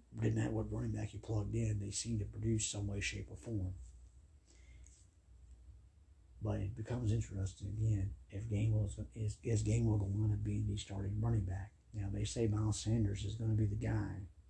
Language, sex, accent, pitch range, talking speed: English, male, American, 90-110 Hz, 195 wpm